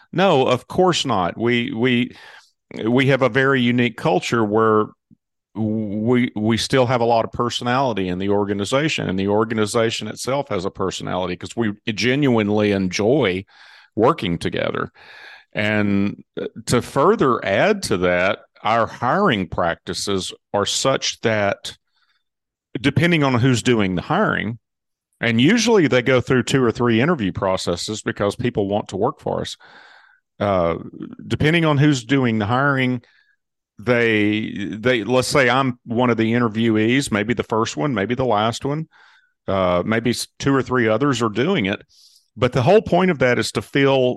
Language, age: English, 40-59